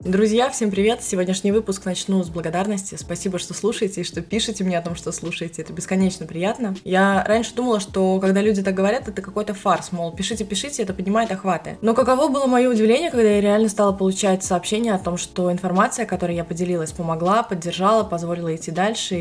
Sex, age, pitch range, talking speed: female, 20-39, 180-220 Hz, 190 wpm